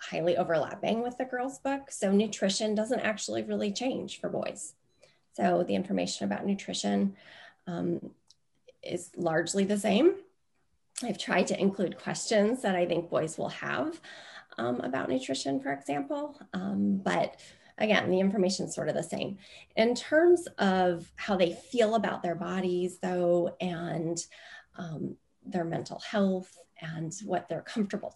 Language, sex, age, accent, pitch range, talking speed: English, female, 30-49, American, 170-220 Hz, 145 wpm